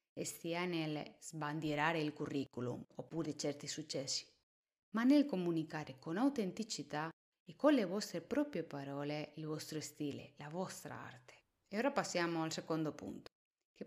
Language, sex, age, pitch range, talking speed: Italian, female, 30-49, 150-185 Hz, 145 wpm